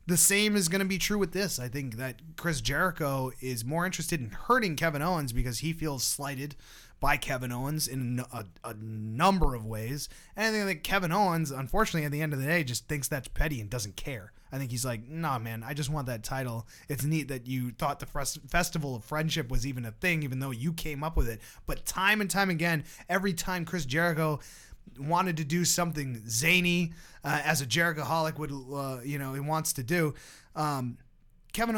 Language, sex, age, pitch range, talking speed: English, male, 20-39, 120-160 Hz, 215 wpm